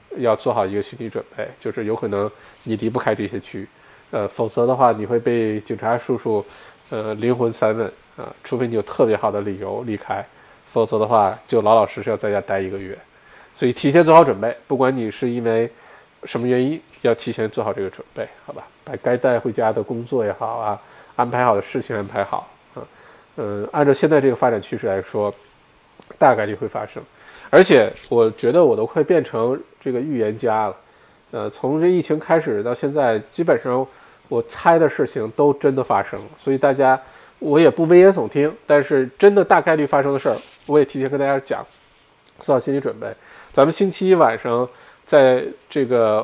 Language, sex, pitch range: Chinese, male, 115-145 Hz